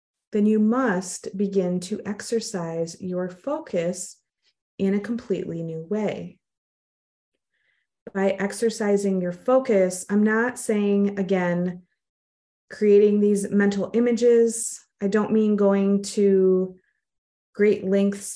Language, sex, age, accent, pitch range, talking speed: English, female, 30-49, American, 180-225 Hz, 105 wpm